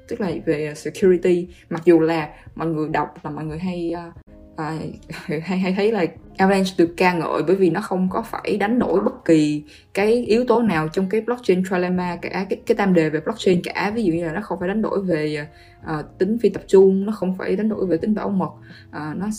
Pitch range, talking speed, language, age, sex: 160-205 Hz, 230 wpm, Vietnamese, 20-39, female